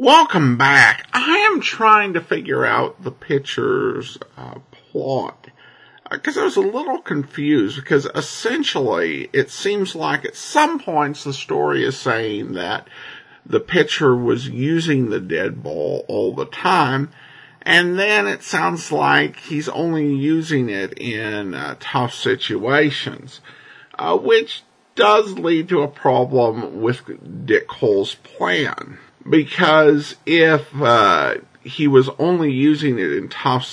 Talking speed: 135 wpm